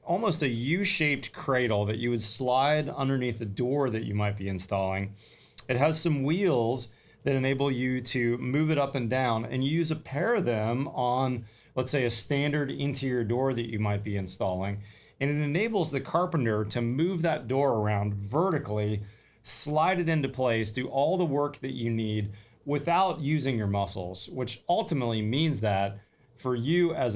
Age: 30-49